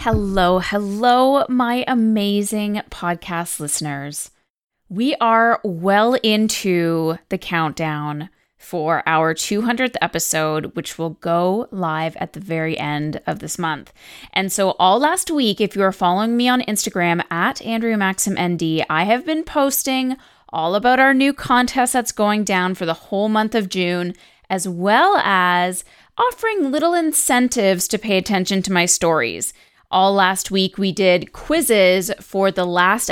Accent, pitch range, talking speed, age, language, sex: American, 175-230 Hz, 145 wpm, 20-39, English, female